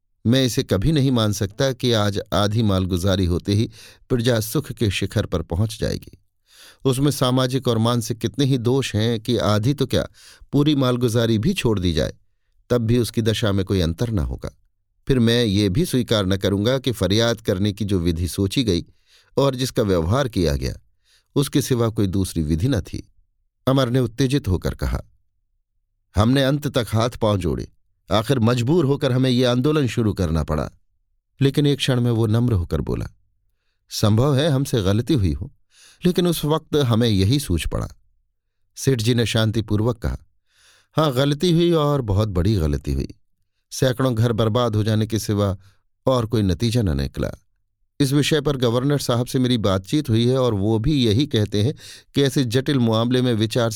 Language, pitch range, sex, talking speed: Hindi, 95-130 Hz, male, 180 wpm